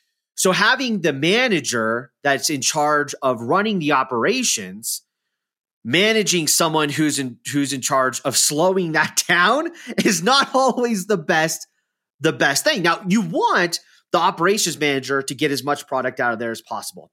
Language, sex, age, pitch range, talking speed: English, male, 30-49, 130-210 Hz, 160 wpm